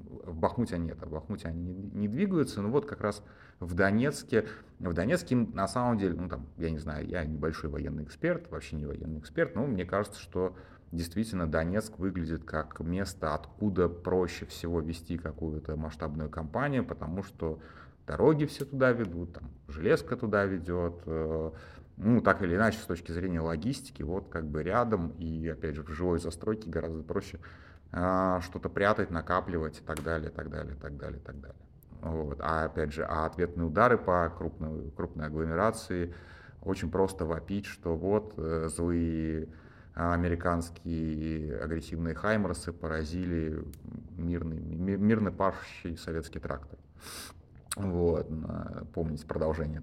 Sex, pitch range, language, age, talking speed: male, 80-95 Hz, Russian, 30-49, 150 wpm